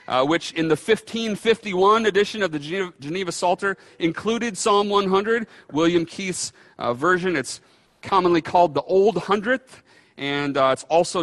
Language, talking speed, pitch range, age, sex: English, 145 wpm, 135-180 Hz, 30-49, male